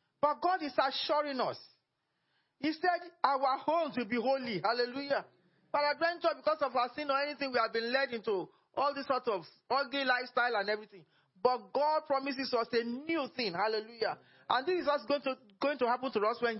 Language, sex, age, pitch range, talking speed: English, male, 40-59, 210-275 Hz, 190 wpm